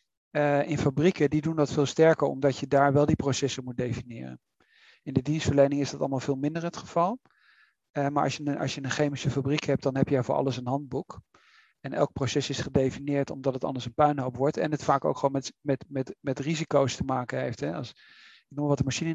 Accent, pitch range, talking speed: Dutch, 135-155 Hz, 230 wpm